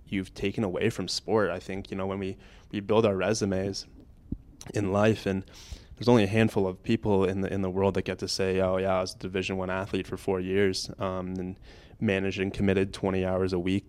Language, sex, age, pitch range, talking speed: English, male, 20-39, 95-100 Hz, 230 wpm